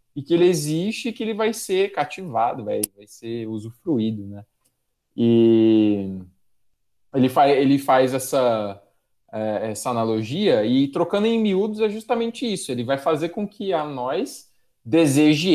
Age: 20-39